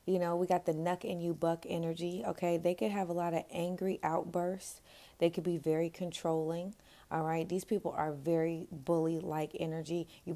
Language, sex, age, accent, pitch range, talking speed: English, female, 30-49, American, 160-175 Hz, 195 wpm